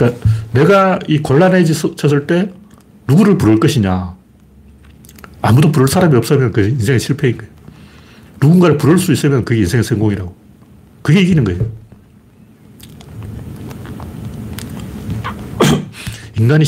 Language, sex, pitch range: Korean, male, 110-160 Hz